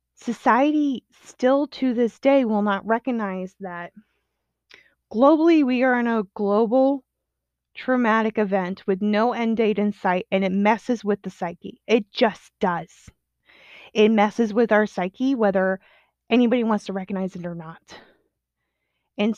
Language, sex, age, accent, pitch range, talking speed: English, female, 20-39, American, 185-235 Hz, 140 wpm